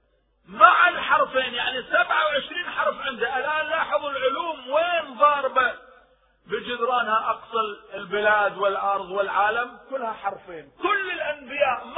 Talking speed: 105 wpm